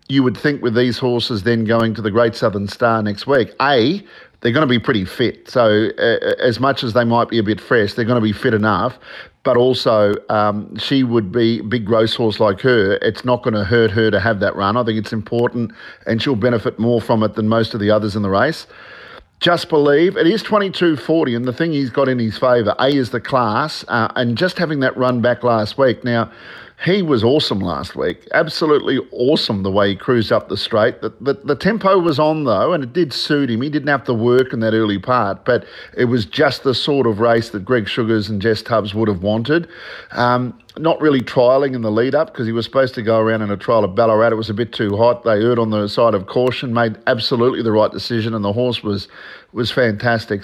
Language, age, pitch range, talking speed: English, 50-69, 110-135 Hz, 240 wpm